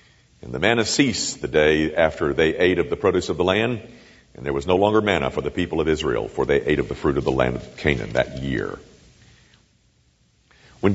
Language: English